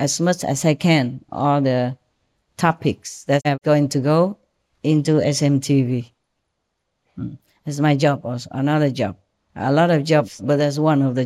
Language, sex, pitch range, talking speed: English, female, 130-165 Hz, 165 wpm